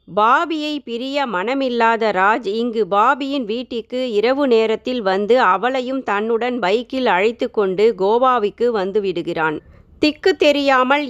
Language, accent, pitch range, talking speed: Tamil, native, 210-270 Hz, 110 wpm